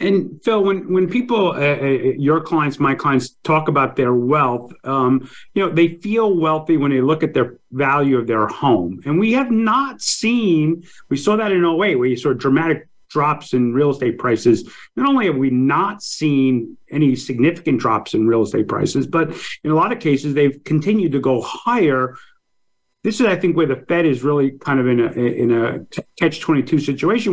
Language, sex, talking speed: English, male, 200 wpm